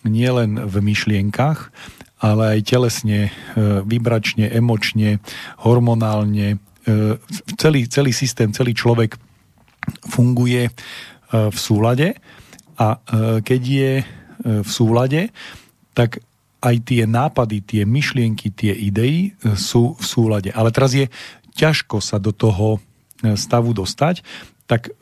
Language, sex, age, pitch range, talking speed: Slovak, male, 40-59, 110-130 Hz, 105 wpm